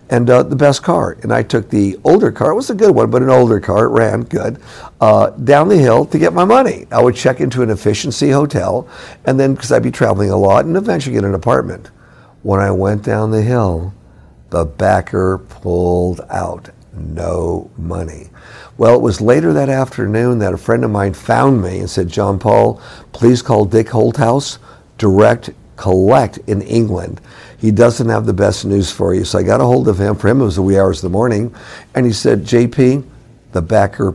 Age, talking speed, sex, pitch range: 50-69, 210 wpm, male, 100-125 Hz